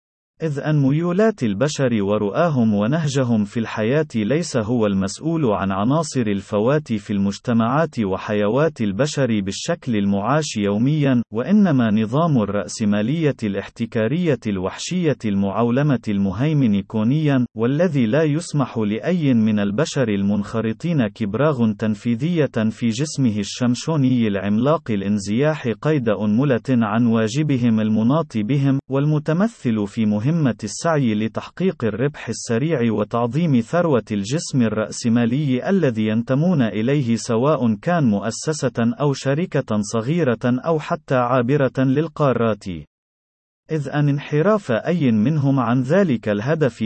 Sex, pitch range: male, 110-150 Hz